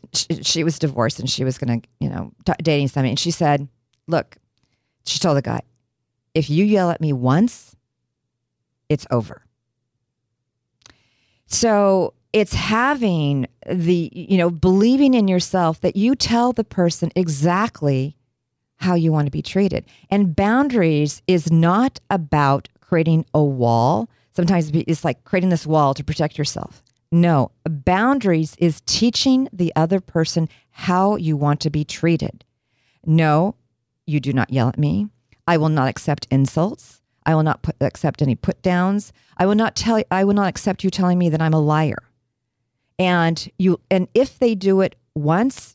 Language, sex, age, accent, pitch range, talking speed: English, female, 40-59, American, 130-185 Hz, 160 wpm